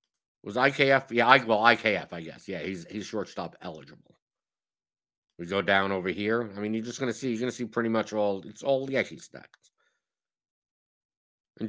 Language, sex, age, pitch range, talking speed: English, male, 50-69, 105-135 Hz, 190 wpm